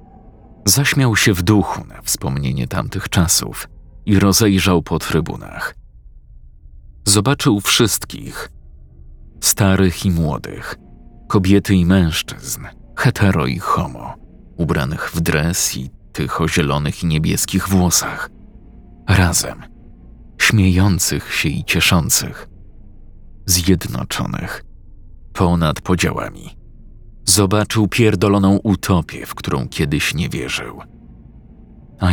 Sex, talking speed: male, 95 wpm